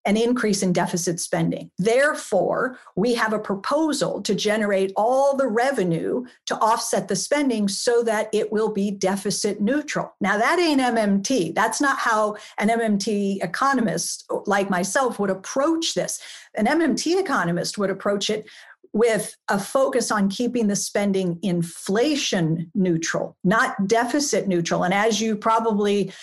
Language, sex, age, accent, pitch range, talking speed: English, female, 50-69, American, 190-230 Hz, 145 wpm